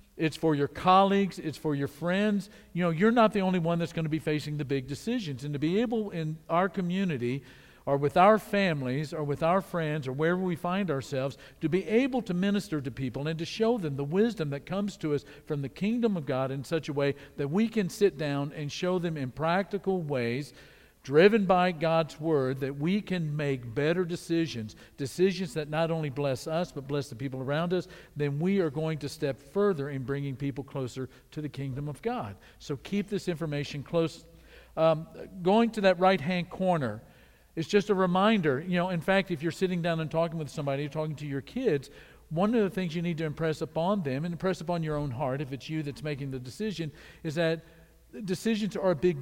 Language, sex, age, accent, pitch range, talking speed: English, male, 50-69, American, 145-185 Hz, 220 wpm